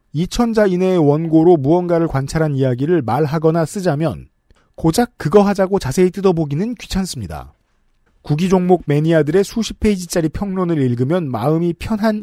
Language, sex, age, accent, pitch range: Korean, male, 40-59, native, 130-190 Hz